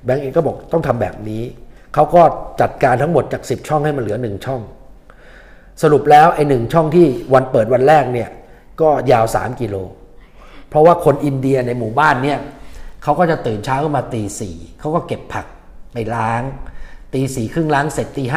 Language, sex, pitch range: Thai, male, 125-160 Hz